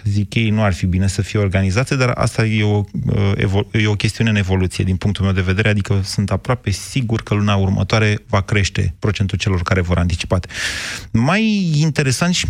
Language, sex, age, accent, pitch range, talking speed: Romanian, male, 30-49, native, 100-130 Hz, 190 wpm